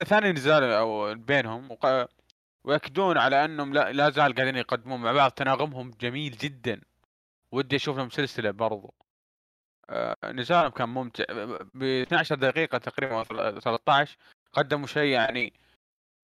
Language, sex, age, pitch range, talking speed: Arabic, male, 20-39, 120-155 Hz, 125 wpm